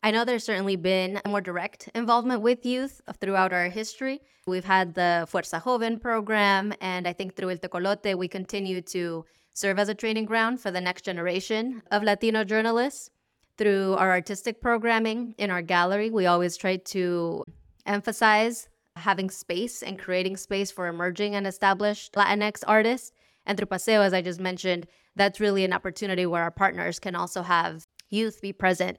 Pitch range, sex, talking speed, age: 180-210 Hz, female, 170 wpm, 20-39